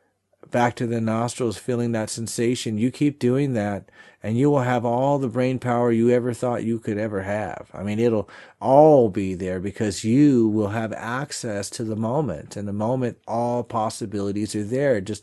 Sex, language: male, English